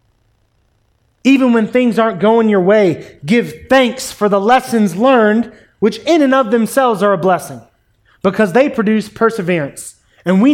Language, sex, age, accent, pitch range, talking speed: English, male, 30-49, American, 170-235 Hz, 155 wpm